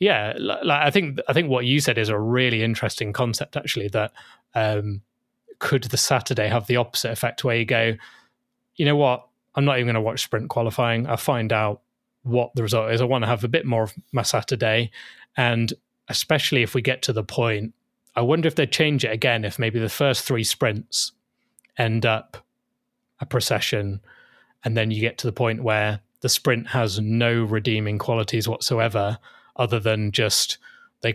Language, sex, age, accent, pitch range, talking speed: English, male, 20-39, British, 110-130 Hz, 190 wpm